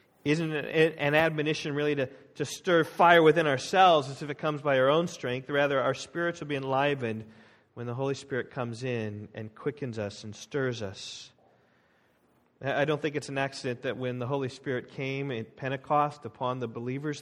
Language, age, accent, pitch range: English, 40-59, American, 125-150 Hz